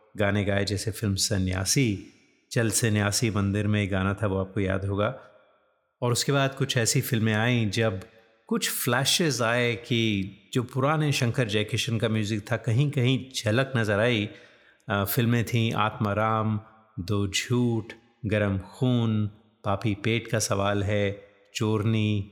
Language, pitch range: Hindi, 105-125 Hz